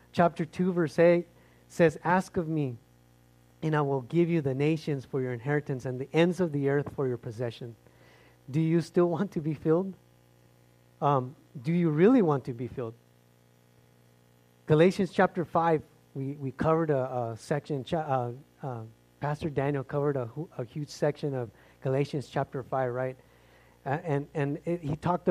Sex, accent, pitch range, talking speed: male, American, 125-160 Hz, 170 wpm